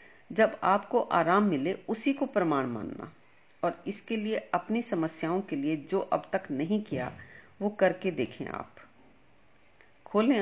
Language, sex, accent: Hindi, female, native